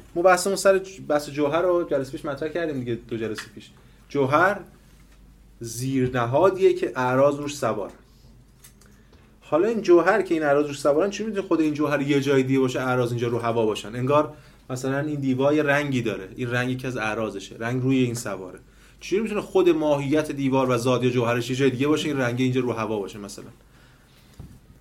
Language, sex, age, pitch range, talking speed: Persian, male, 30-49, 125-160 Hz, 180 wpm